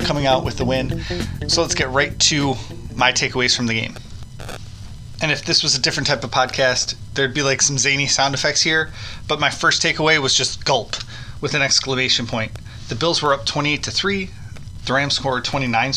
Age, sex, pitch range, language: 20-39, male, 115-140 Hz, English